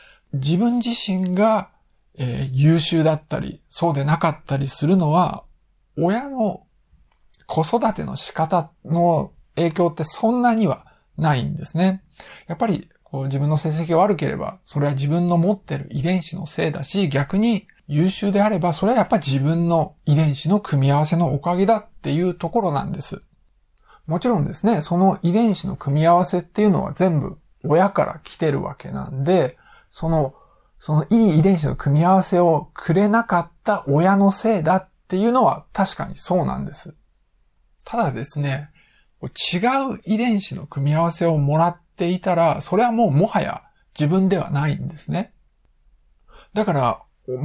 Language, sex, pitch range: Japanese, male, 155-200 Hz